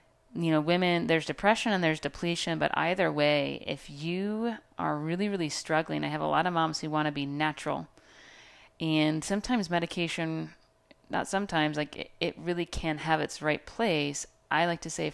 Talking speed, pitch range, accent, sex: 180 wpm, 145-170 Hz, American, female